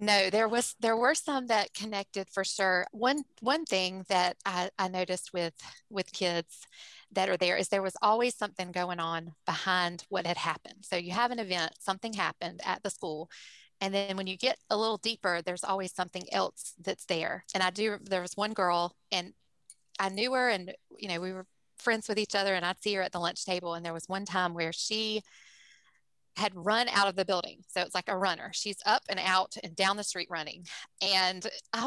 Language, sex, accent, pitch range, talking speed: English, female, American, 185-225 Hz, 215 wpm